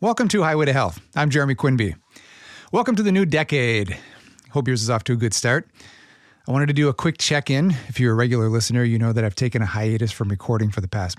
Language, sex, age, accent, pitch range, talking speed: English, male, 40-59, American, 110-130 Hz, 240 wpm